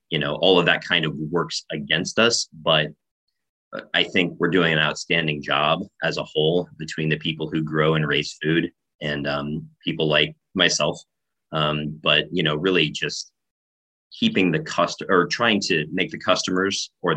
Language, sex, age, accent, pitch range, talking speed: English, male, 30-49, American, 75-90 Hz, 175 wpm